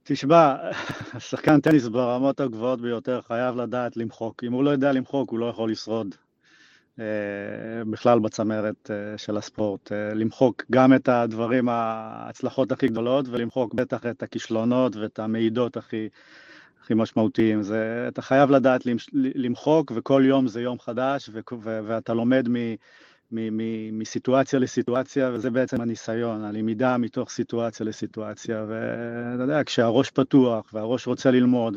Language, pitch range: Hebrew, 115-135 Hz